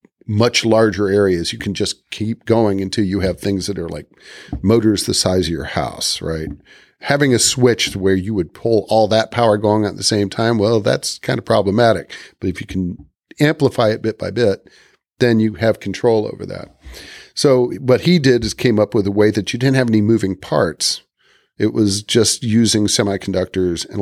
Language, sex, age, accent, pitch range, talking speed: English, male, 40-59, American, 100-120 Hz, 200 wpm